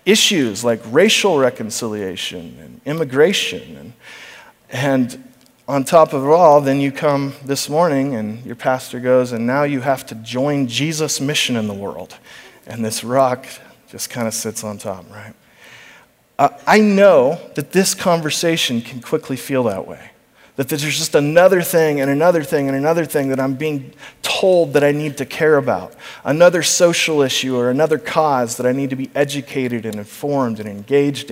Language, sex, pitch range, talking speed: English, male, 130-160 Hz, 175 wpm